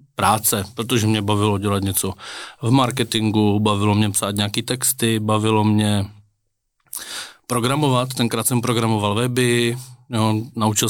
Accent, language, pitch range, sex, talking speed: native, Czech, 110-125 Hz, male, 120 wpm